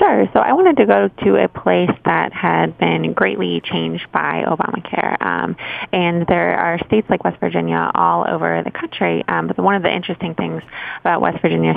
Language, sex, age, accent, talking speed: English, female, 20-39, American, 195 wpm